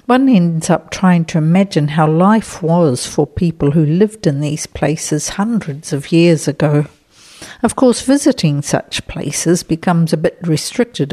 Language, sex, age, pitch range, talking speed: English, female, 60-79, 150-195 Hz, 155 wpm